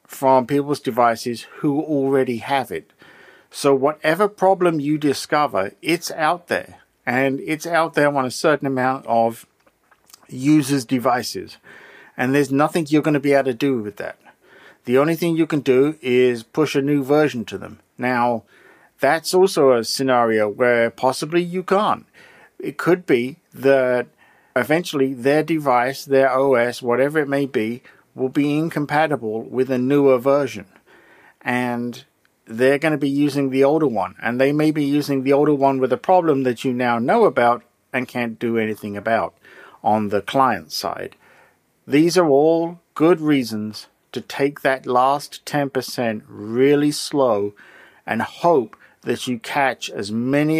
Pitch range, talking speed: 120-150 Hz, 160 wpm